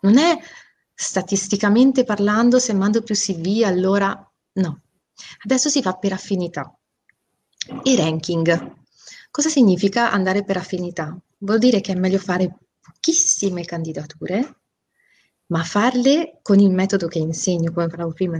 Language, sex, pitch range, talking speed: Italian, female, 175-235 Hz, 130 wpm